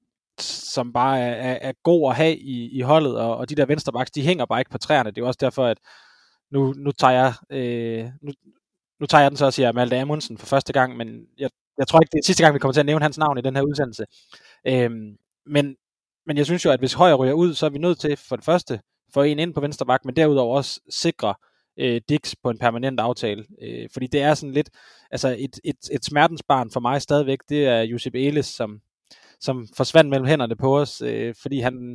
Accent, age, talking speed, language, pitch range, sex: native, 20-39, 240 wpm, Danish, 125-150 Hz, male